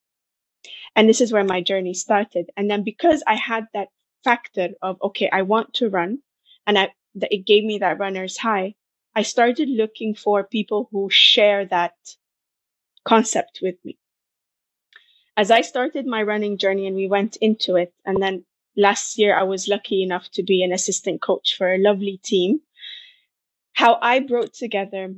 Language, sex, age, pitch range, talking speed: English, female, 20-39, 195-230 Hz, 170 wpm